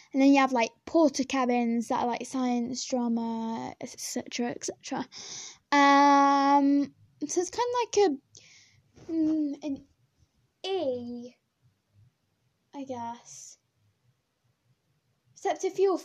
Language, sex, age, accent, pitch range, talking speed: English, female, 10-29, British, 245-305 Hz, 110 wpm